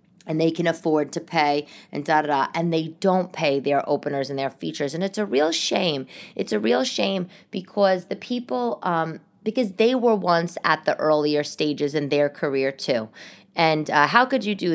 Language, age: English, 30-49